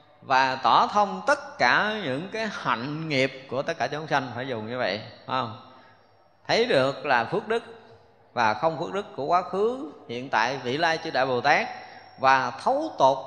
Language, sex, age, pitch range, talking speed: Vietnamese, male, 20-39, 115-160 Hz, 190 wpm